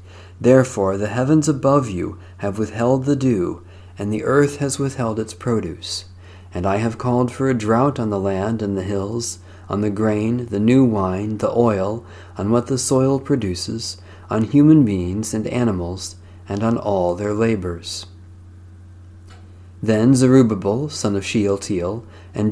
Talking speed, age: 155 wpm, 40-59